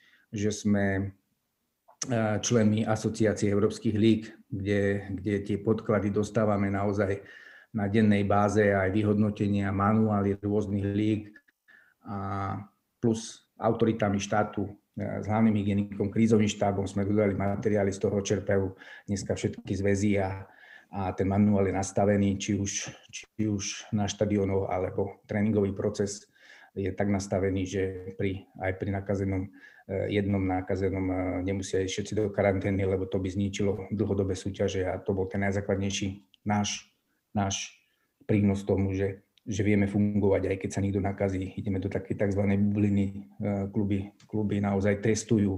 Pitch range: 95-105 Hz